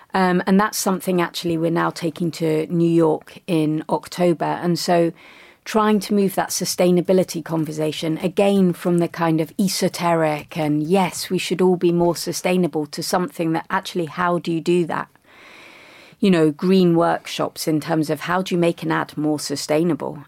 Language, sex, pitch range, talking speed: English, female, 155-180 Hz, 175 wpm